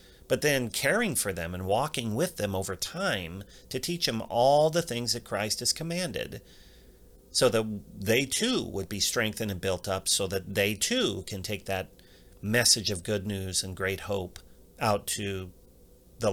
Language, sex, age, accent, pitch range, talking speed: English, male, 40-59, American, 95-130 Hz, 175 wpm